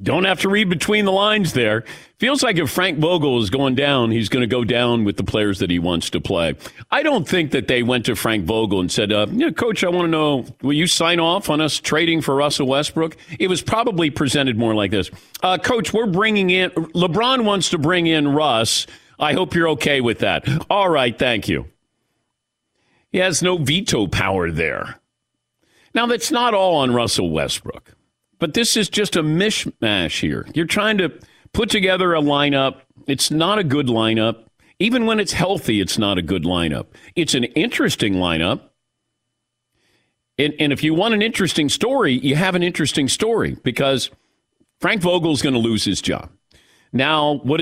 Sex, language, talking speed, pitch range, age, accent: male, English, 195 wpm, 120-180 Hz, 50-69, American